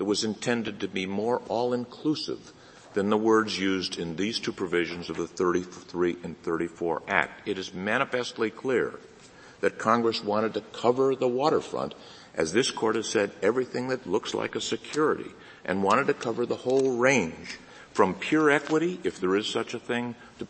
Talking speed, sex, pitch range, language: 175 wpm, male, 105-140 Hz, English